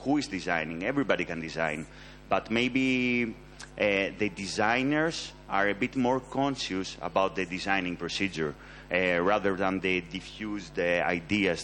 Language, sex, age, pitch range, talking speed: French, male, 30-49, 100-130 Hz, 140 wpm